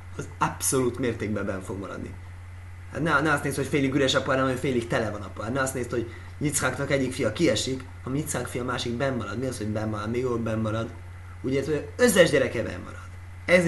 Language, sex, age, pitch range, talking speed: Hungarian, male, 30-49, 90-140 Hz, 220 wpm